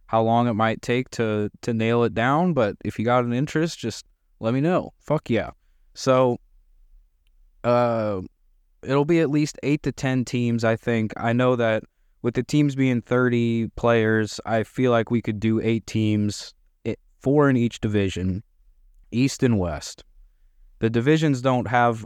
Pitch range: 100-125 Hz